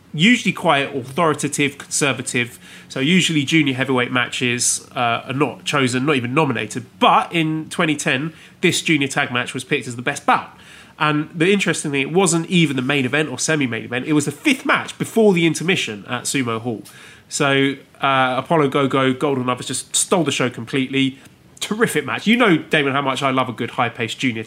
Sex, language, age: male, English, 30-49